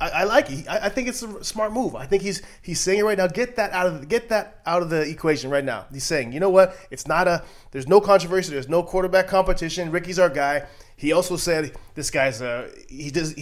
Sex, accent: male, American